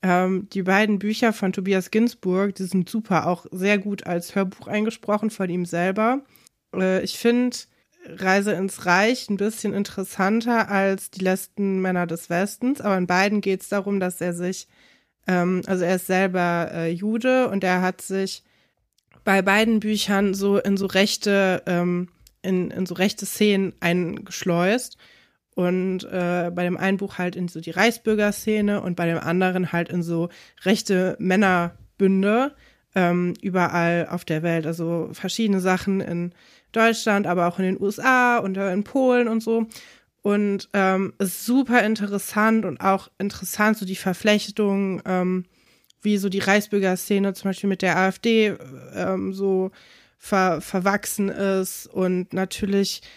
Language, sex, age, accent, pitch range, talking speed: German, female, 20-39, German, 185-215 Hz, 145 wpm